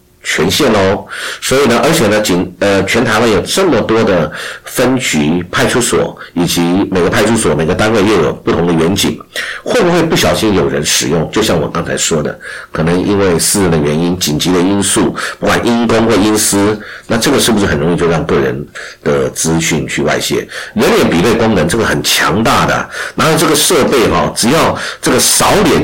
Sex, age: male, 50-69